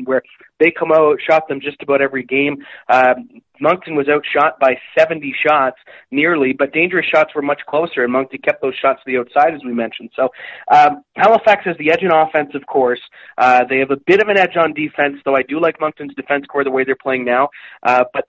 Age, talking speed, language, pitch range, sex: 30-49, 225 wpm, English, 135-165 Hz, male